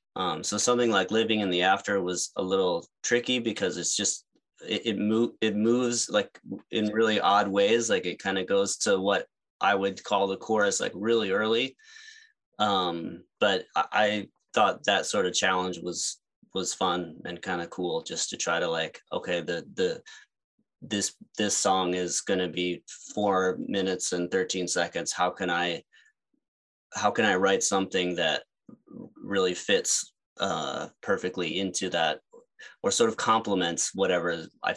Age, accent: 20-39, American